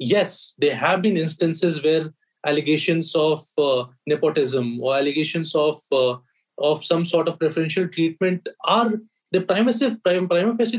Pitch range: 155-210 Hz